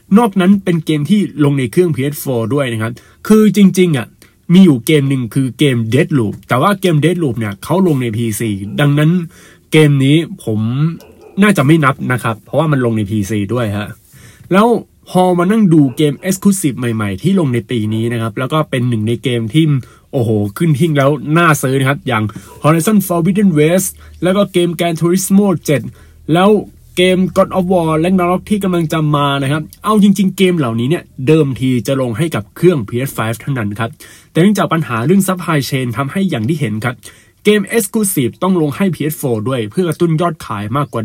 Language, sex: Thai, male